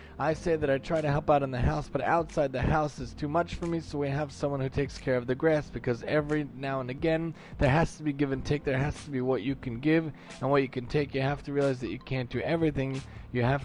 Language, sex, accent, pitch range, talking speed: English, male, American, 135-170 Hz, 290 wpm